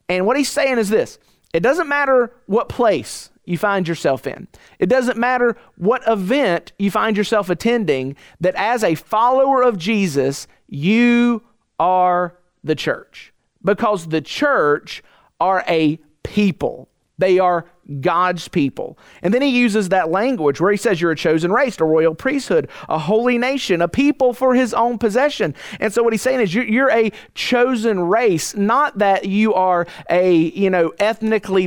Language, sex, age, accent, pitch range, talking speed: English, male, 40-59, American, 170-230 Hz, 165 wpm